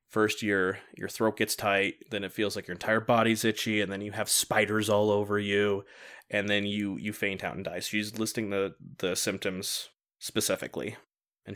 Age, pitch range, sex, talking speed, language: 20-39, 100-115 Hz, male, 195 wpm, English